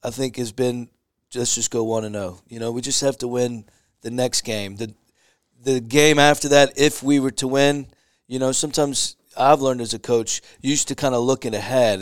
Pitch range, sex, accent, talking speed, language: 105-130 Hz, male, American, 225 wpm, English